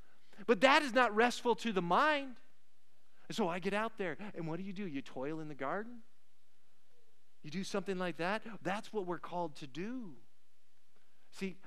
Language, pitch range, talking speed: English, 140-190 Hz, 180 wpm